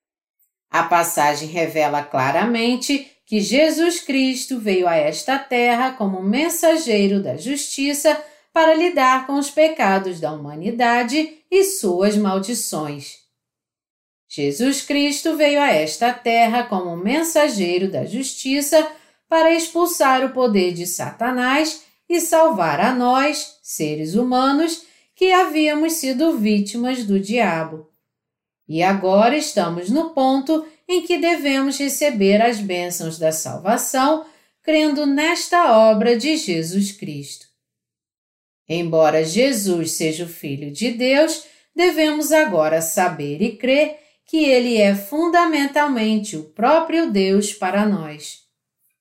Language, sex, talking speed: Portuguese, female, 115 wpm